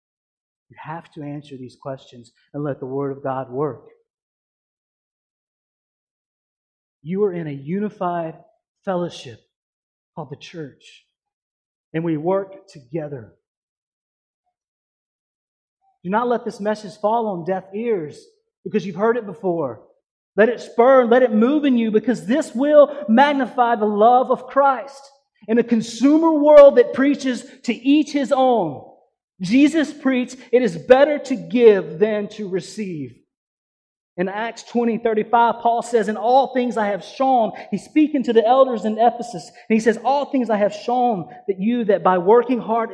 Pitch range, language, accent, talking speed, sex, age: 165-245 Hz, English, American, 150 wpm, male, 30-49